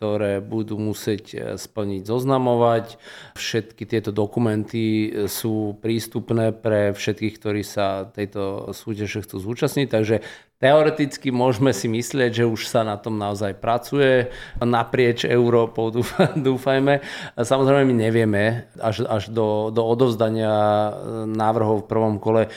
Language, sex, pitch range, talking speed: Slovak, male, 100-110 Hz, 120 wpm